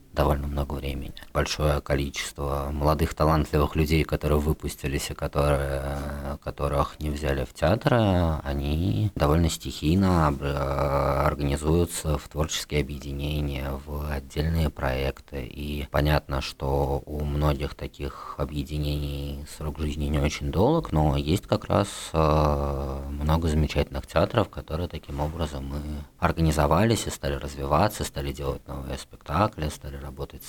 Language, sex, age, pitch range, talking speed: Russian, male, 20-39, 70-80 Hz, 120 wpm